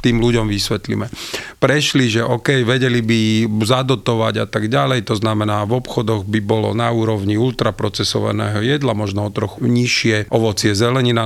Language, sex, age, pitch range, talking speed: Slovak, male, 40-59, 110-135 Hz, 150 wpm